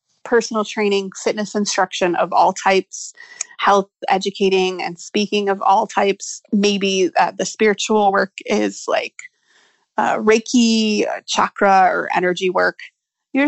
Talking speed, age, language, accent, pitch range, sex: 125 wpm, 30-49, English, American, 200-280 Hz, female